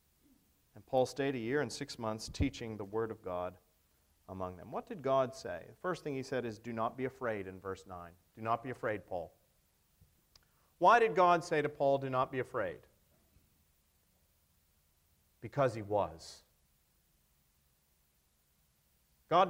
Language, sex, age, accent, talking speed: English, male, 40-59, American, 155 wpm